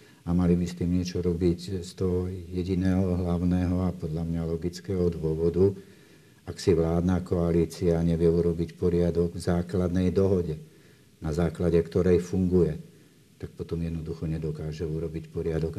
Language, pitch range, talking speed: Slovak, 80-90 Hz, 135 wpm